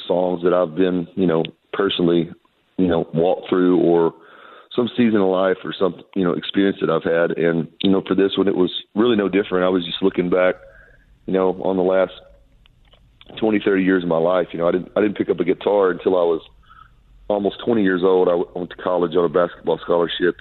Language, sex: English, male